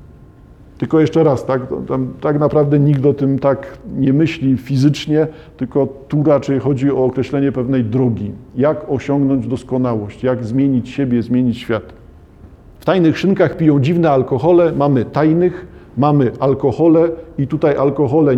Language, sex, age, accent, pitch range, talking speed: Polish, male, 50-69, native, 130-160 Hz, 135 wpm